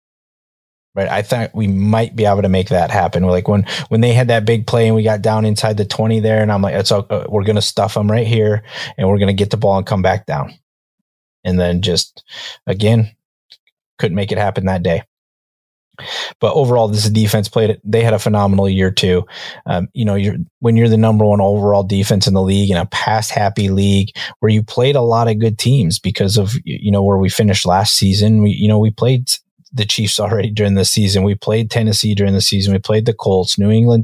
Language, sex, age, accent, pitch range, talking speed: English, male, 20-39, American, 100-110 Hz, 235 wpm